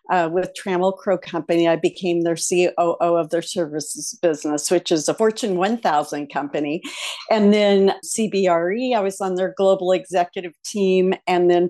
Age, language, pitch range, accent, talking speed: 50-69, English, 170-200 Hz, American, 160 wpm